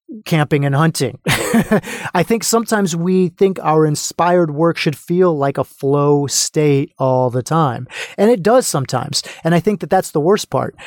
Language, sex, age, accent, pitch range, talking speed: English, male, 30-49, American, 130-165 Hz, 175 wpm